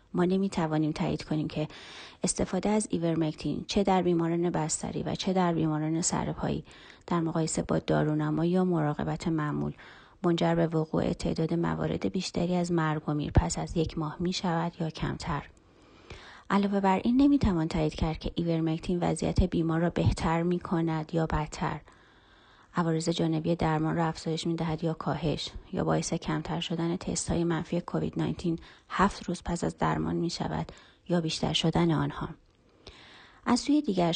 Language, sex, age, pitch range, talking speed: Persian, female, 30-49, 155-175 Hz, 160 wpm